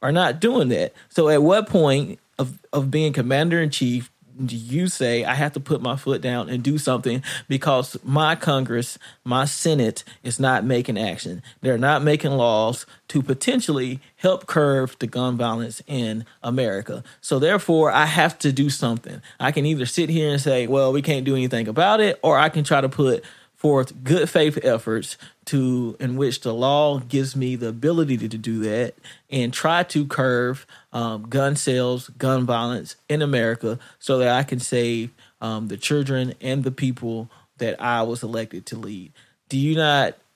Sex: male